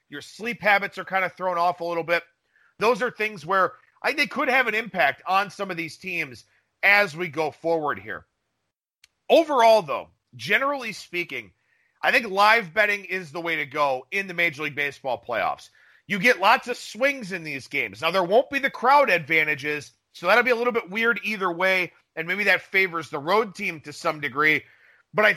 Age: 40-59